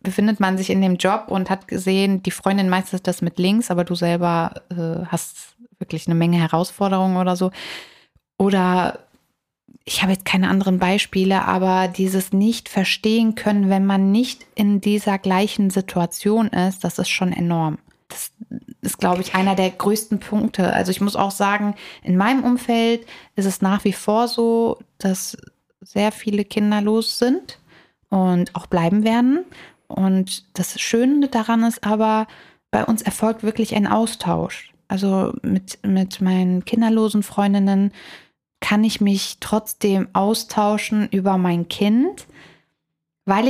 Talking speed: 150 wpm